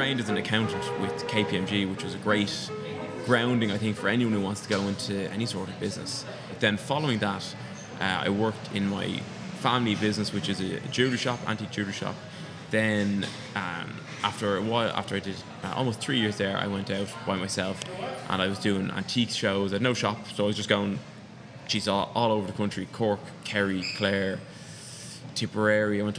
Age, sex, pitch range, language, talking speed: 20-39, male, 100-115 Hz, English, 205 wpm